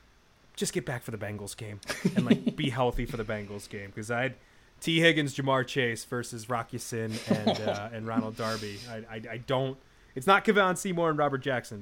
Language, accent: English, American